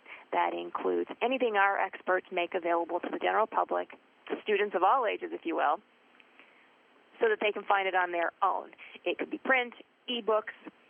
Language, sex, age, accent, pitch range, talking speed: English, female, 30-49, American, 185-290 Hz, 180 wpm